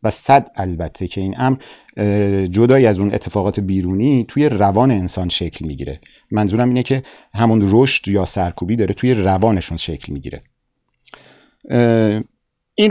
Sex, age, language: male, 50-69, Persian